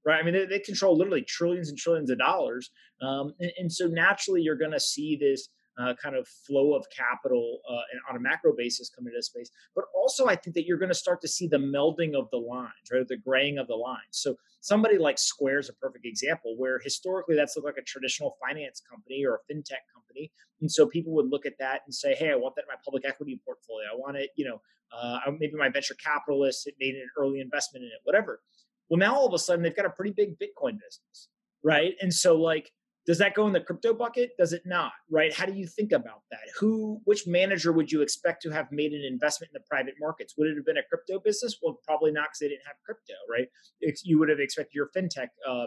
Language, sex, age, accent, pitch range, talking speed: English, male, 30-49, American, 145-215 Hz, 245 wpm